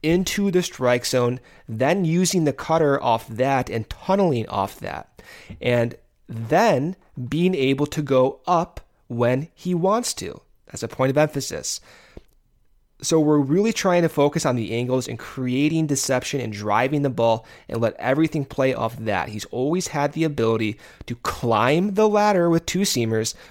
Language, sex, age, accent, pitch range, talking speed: English, male, 30-49, American, 115-155 Hz, 165 wpm